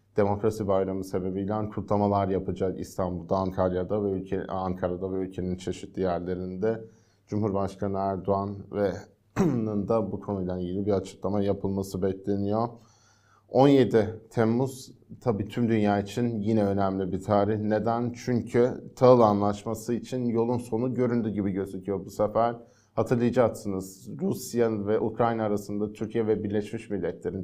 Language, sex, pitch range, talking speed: Turkish, male, 100-115 Hz, 125 wpm